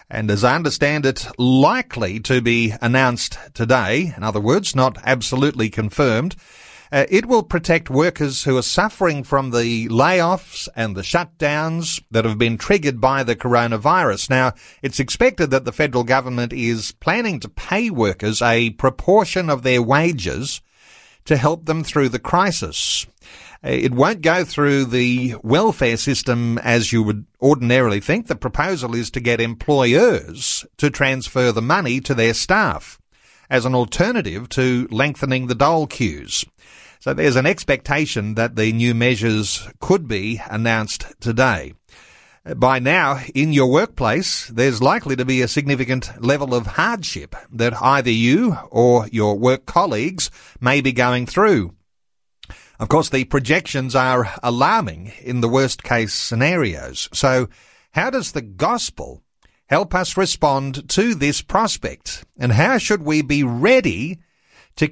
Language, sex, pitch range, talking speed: English, male, 115-150 Hz, 145 wpm